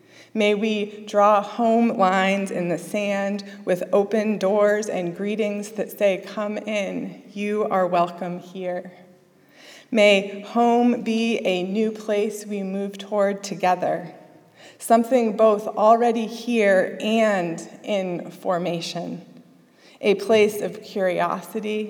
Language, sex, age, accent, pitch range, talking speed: English, female, 20-39, American, 180-215 Hz, 115 wpm